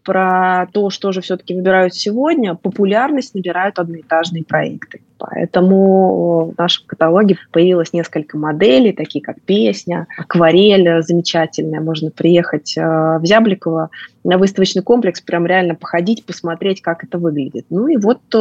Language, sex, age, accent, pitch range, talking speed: Russian, female, 20-39, native, 165-205 Hz, 130 wpm